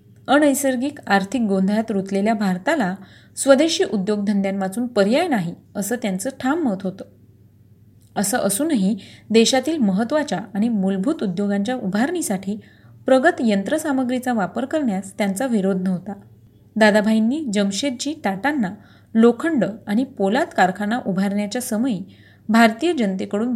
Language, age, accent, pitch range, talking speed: Marathi, 30-49, native, 195-250 Hz, 100 wpm